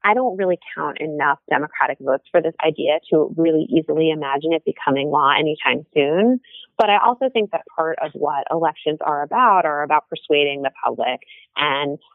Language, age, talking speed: English, 30-49, 180 wpm